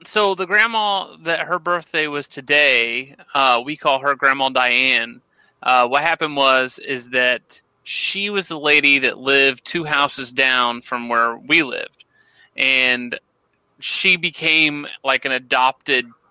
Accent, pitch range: American, 130-160 Hz